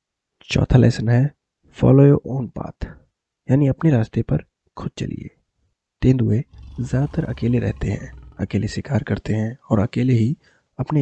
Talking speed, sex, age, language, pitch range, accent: 140 wpm, male, 20-39, Hindi, 110-135 Hz, native